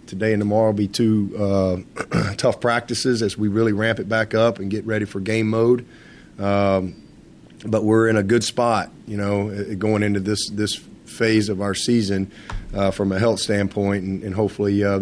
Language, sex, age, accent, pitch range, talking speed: English, male, 30-49, American, 100-115 Hz, 190 wpm